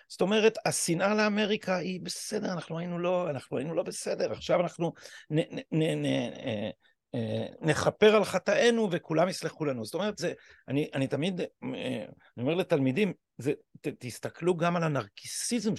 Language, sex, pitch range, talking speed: Hebrew, male, 135-210 Hz, 135 wpm